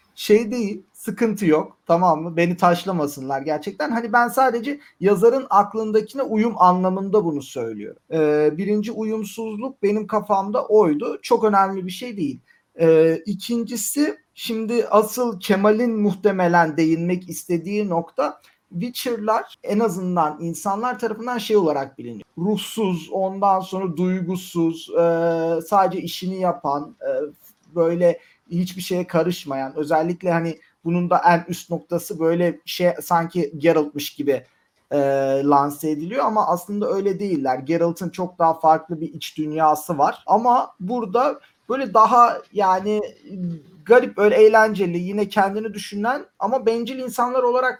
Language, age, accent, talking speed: Turkish, 40-59, native, 125 wpm